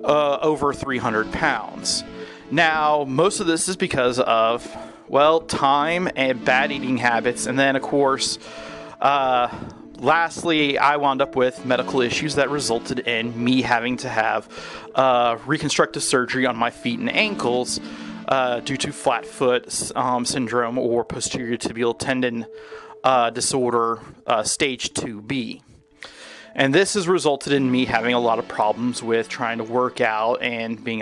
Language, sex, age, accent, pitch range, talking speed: English, male, 30-49, American, 120-140 Hz, 150 wpm